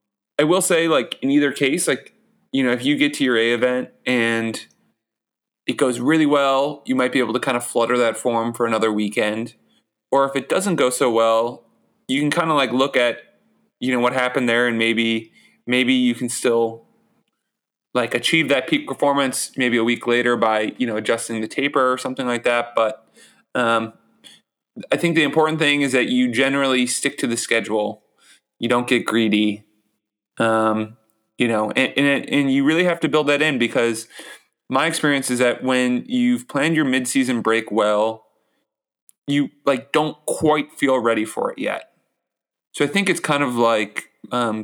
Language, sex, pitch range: English, male, 115-140 Hz